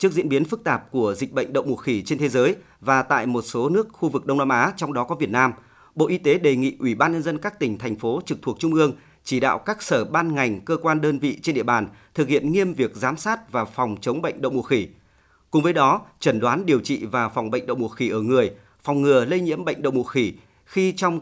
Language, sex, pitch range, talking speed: Vietnamese, male, 130-175 Hz, 275 wpm